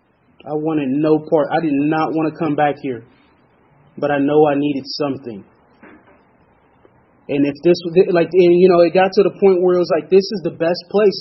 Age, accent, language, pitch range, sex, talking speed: 30-49, American, English, 155-195 Hz, male, 210 wpm